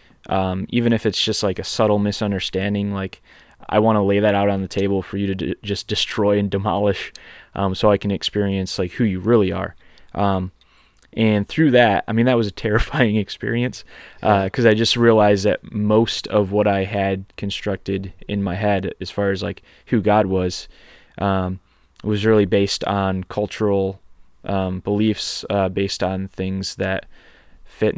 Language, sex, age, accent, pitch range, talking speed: English, male, 20-39, American, 95-110 Hz, 180 wpm